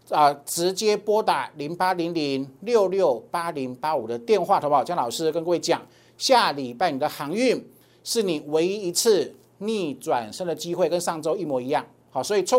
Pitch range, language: 160-225 Hz, Chinese